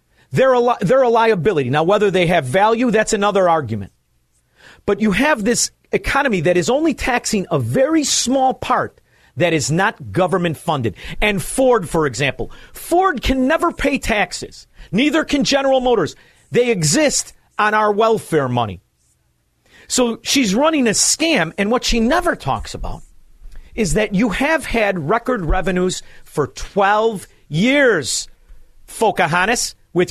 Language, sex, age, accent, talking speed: English, male, 50-69, American, 150 wpm